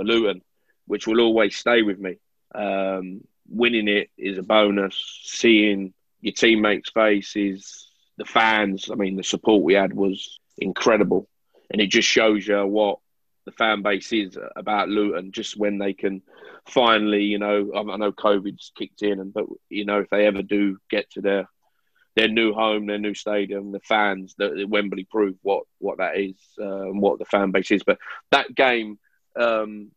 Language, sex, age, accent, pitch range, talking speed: English, male, 20-39, British, 100-110 Hz, 170 wpm